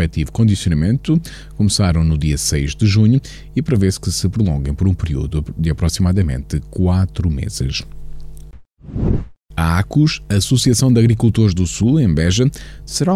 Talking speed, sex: 135 wpm, male